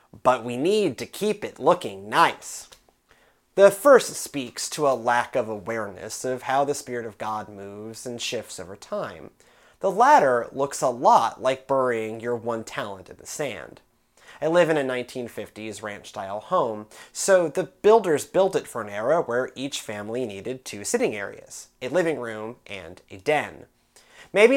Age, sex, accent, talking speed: 30-49, male, American, 170 wpm